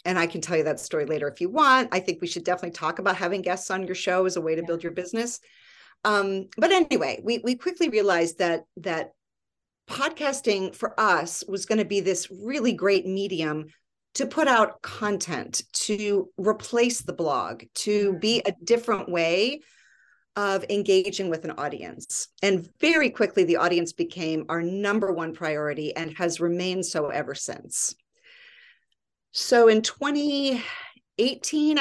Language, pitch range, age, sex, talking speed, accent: English, 175-235 Hz, 40-59, female, 165 wpm, American